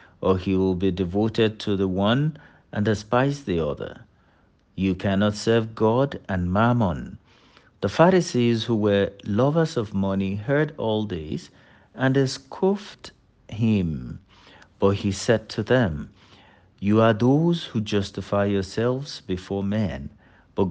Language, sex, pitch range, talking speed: English, male, 95-125 Hz, 130 wpm